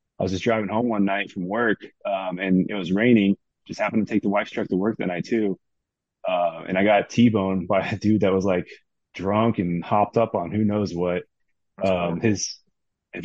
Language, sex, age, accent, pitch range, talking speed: English, male, 20-39, American, 95-110 Hz, 215 wpm